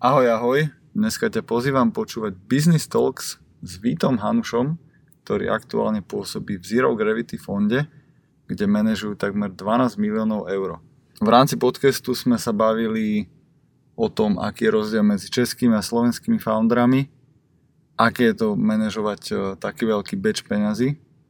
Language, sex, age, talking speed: Slovak, male, 20-39, 135 wpm